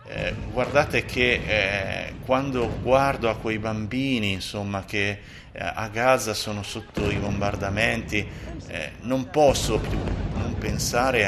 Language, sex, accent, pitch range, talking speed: Italian, male, native, 105-125 Hz, 130 wpm